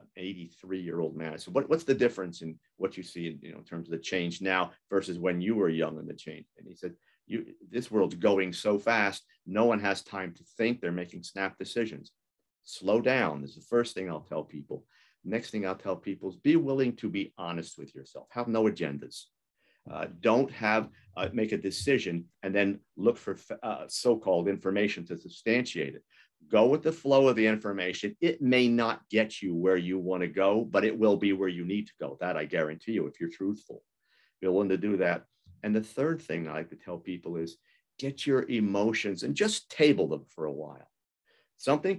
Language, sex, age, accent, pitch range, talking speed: English, male, 50-69, American, 90-120 Hz, 215 wpm